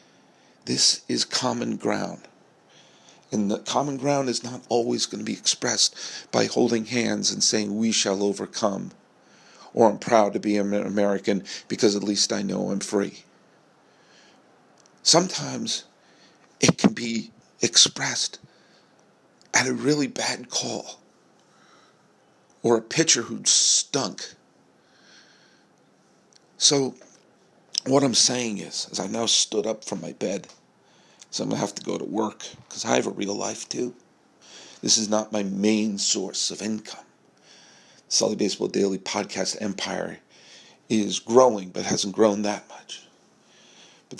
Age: 50-69